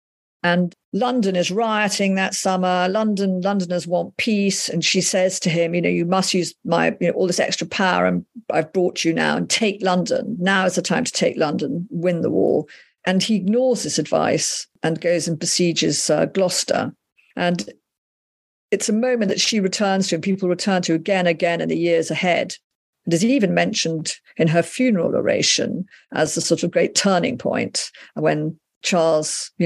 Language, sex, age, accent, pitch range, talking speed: English, female, 50-69, British, 160-195 Hz, 185 wpm